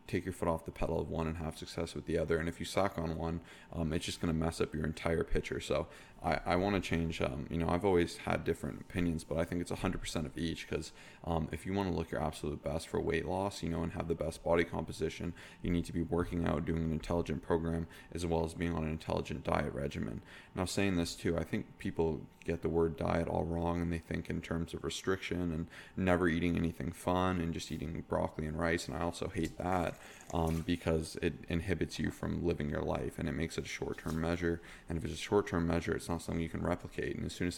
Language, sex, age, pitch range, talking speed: English, male, 20-39, 80-85 Hz, 255 wpm